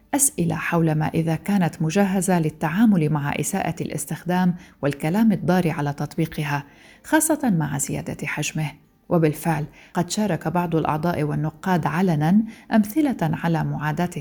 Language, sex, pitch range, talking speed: Arabic, female, 155-190 Hz, 120 wpm